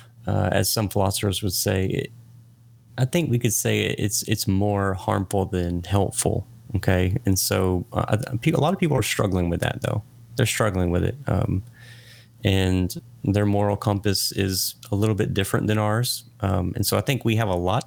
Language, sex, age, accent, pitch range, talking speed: English, male, 30-49, American, 95-120 Hz, 190 wpm